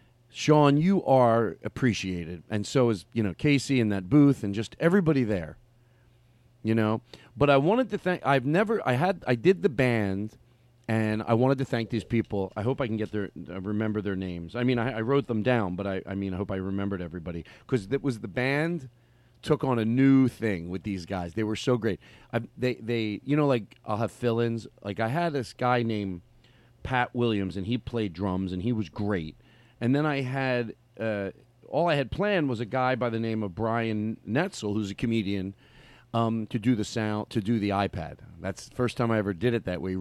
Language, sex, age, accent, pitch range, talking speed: English, male, 40-59, American, 100-130 Hz, 220 wpm